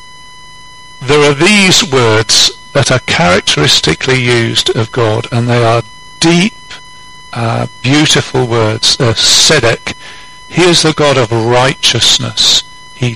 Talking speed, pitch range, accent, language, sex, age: 120 wpm, 125-165 Hz, British, English, male, 50-69